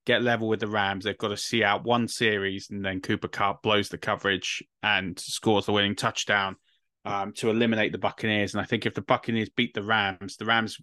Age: 20-39